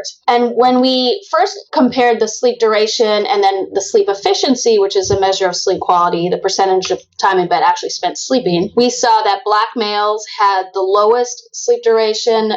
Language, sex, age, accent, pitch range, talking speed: English, female, 30-49, American, 190-255 Hz, 185 wpm